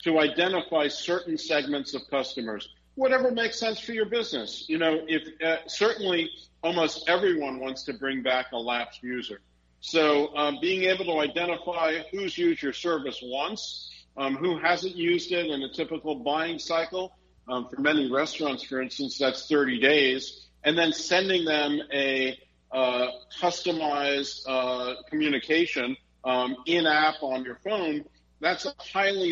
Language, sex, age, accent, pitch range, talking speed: English, male, 50-69, American, 135-170 Hz, 150 wpm